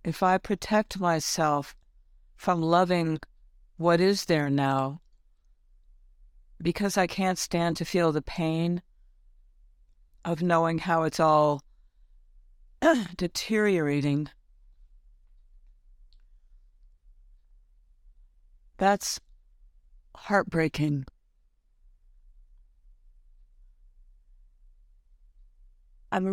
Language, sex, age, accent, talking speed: English, female, 50-69, American, 60 wpm